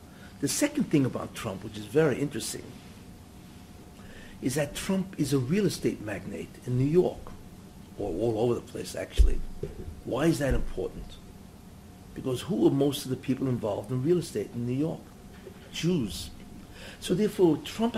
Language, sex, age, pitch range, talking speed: English, male, 60-79, 120-175 Hz, 160 wpm